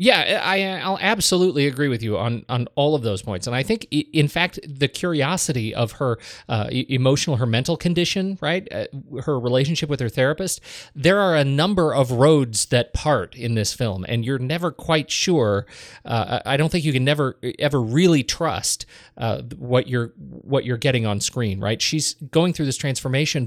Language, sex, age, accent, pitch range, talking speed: English, male, 40-59, American, 120-155 Hz, 185 wpm